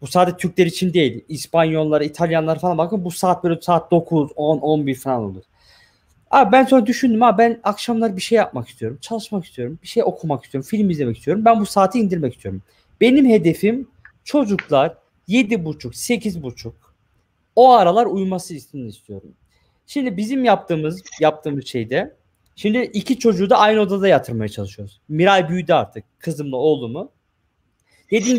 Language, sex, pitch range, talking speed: Turkish, male, 150-220 Hz, 150 wpm